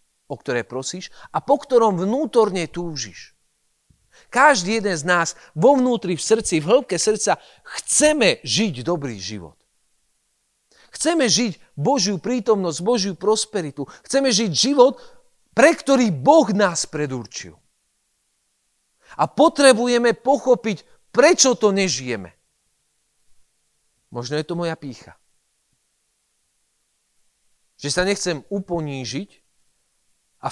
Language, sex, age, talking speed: Slovak, male, 40-59, 105 wpm